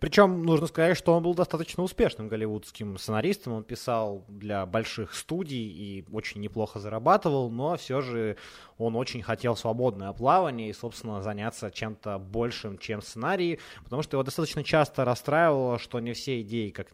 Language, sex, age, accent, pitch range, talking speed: Ukrainian, male, 20-39, native, 105-135 Hz, 160 wpm